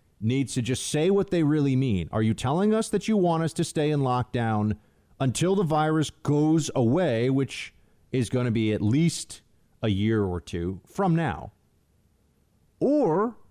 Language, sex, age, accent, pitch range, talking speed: English, male, 40-59, American, 110-150 Hz, 175 wpm